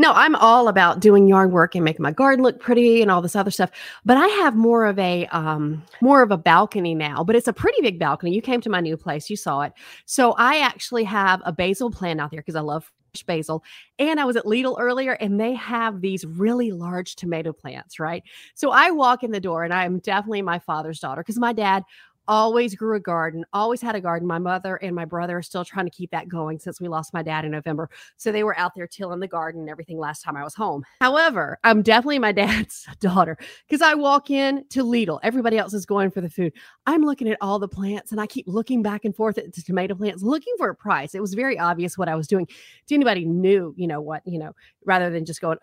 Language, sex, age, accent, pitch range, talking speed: English, female, 30-49, American, 170-230 Hz, 250 wpm